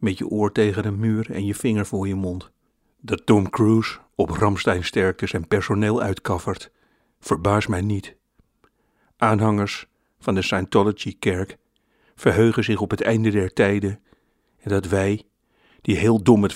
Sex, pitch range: male, 100-115 Hz